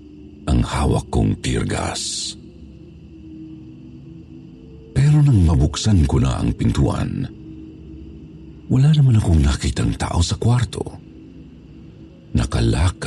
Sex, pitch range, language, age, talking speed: male, 75-105 Hz, Filipino, 50-69, 85 wpm